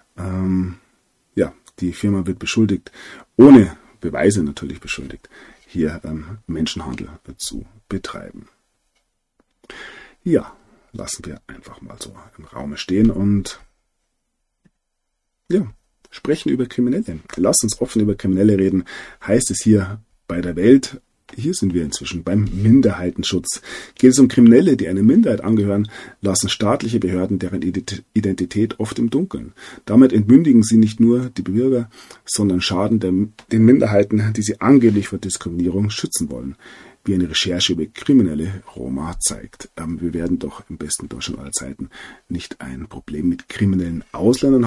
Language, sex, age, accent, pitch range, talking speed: German, male, 40-59, German, 90-110 Hz, 135 wpm